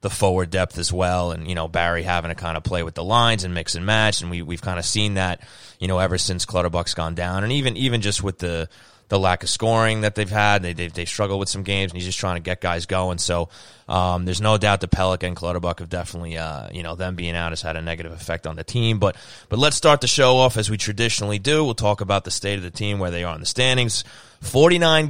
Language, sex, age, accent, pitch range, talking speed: English, male, 20-39, American, 90-115 Hz, 270 wpm